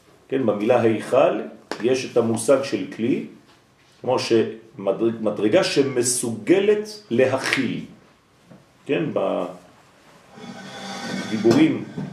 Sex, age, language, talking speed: male, 40-59, French, 70 wpm